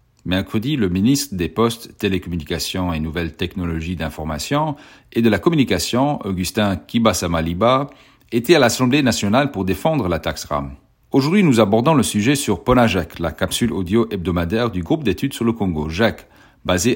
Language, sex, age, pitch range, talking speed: French, male, 40-59, 90-130 Hz, 155 wpm